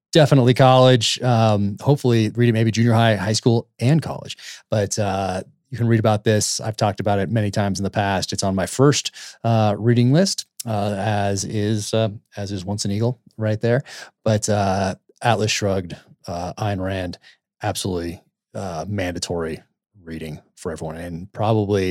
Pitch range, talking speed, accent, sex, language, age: 95-120 Hz, 170 wpm, American, male, English, 30-49